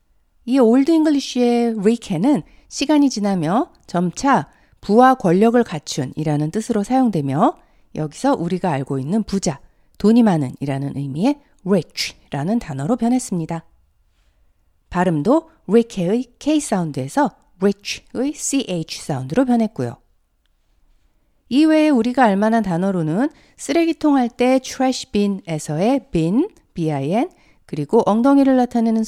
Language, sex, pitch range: Korean, female, 160-260 Hz